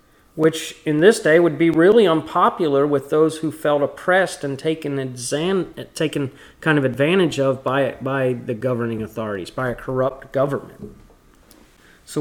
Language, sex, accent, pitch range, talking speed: English, male, American, 120-150 Hz, 150 wpm